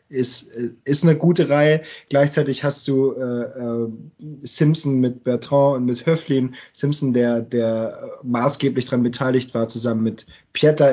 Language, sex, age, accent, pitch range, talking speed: German, male, 20-39, German, 110-130 Hz, 145 wpm